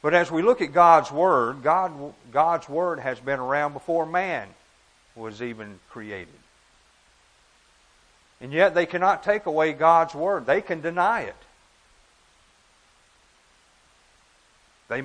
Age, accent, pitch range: 50-69, American, 125-170 Hz